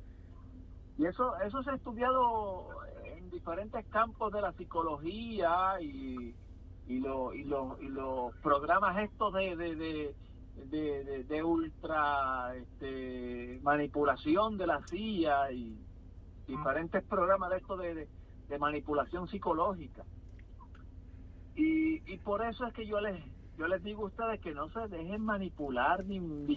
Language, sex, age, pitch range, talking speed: Spanish, male, 50-69, 130-205 Hz, 140 wpm